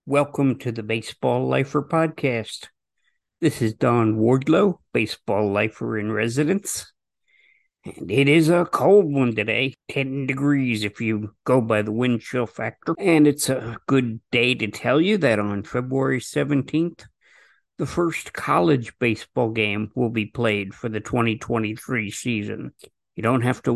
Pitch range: 110-145 Hz